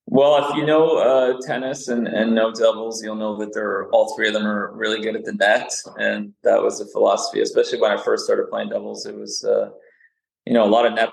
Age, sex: 20-39, male